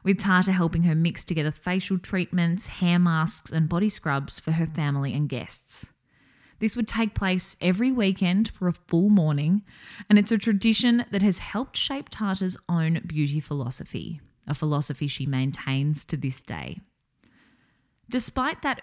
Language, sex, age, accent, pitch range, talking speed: English, female, 20-39, Australian, 150-195 Hz, 155 wpm